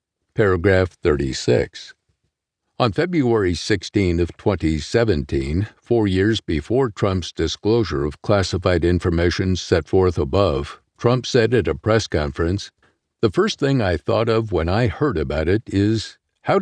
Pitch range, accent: 90-115 Hz, American